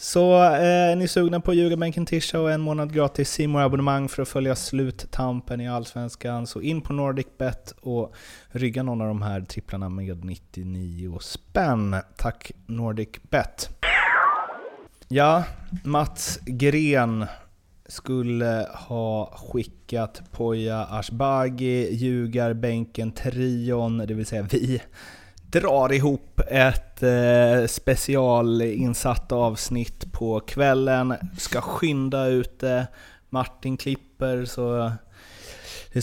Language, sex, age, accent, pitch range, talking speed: Swedish, male, 30-49, native, 100-130 Hz, 110 wpm